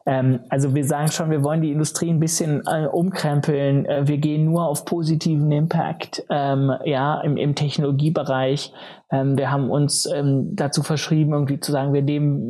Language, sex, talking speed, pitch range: German, male, 180 wpm, 135-160 Hz